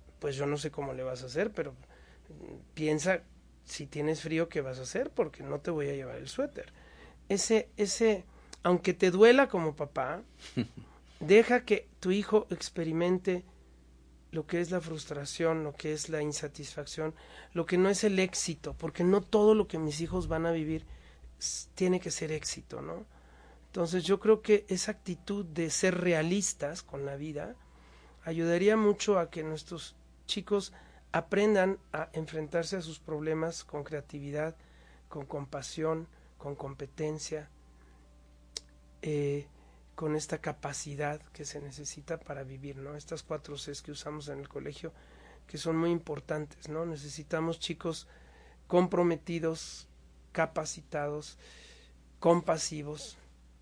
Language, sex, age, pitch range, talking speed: Spanish, male, 40-59, 140-175 Hz, 140 wpm